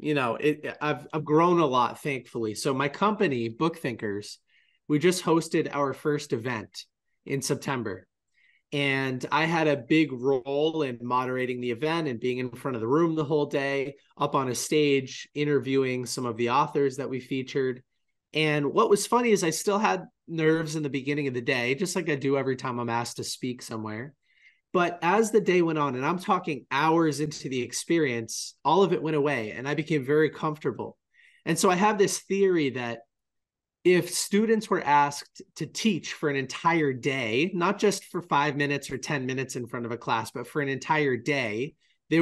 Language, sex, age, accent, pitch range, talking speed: English, male, 30-49, American, 130-165 Hz, 195 wpm